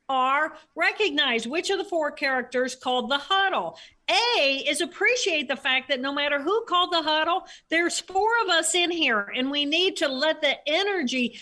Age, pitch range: 50-69, 250-330 Hz